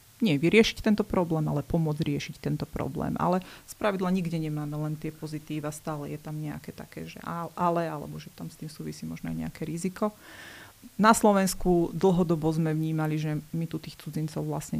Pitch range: 155-180 Hz